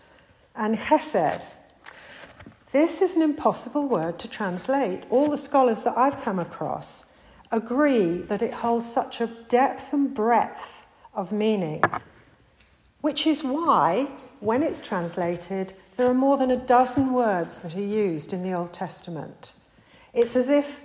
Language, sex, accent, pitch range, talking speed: English, female, British, 195-255 Hz, 145 wpm